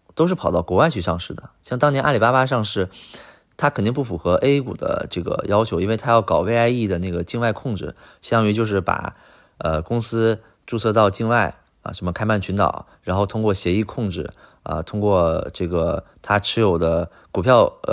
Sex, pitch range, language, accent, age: male, 90-115 Hz, Chinese, native, 20-39